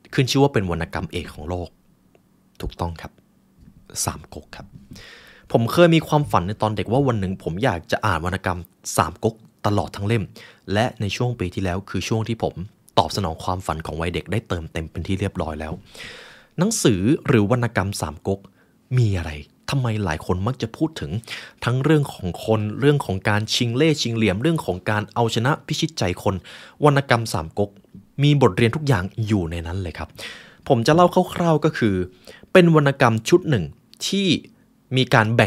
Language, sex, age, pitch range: Thai, male, 20-39, 90-130 Hz